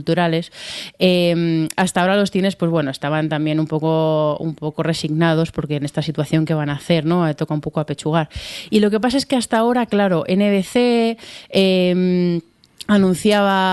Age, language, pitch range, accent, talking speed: 30-49, Spanish, 160-190 Hz, Spanish, 170 wpm